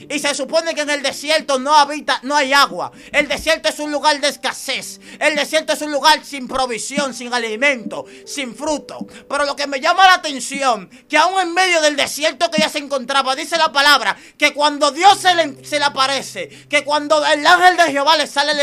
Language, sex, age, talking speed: Spanish, male, 30-49, 215 wpm